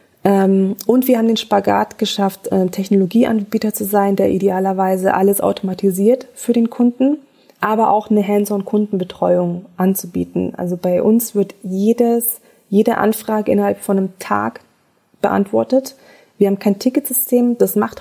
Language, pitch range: German, 190-225 Hz